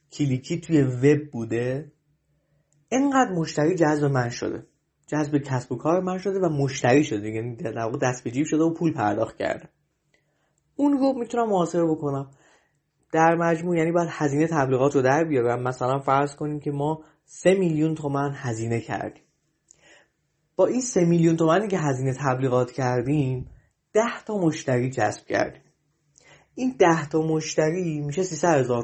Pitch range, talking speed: 135-170 Hz, 150 wpm